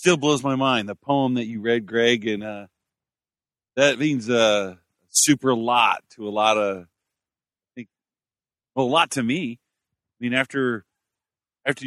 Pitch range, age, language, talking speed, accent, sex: 105-125 Hz, 40-59, English, 165 wpm, American, male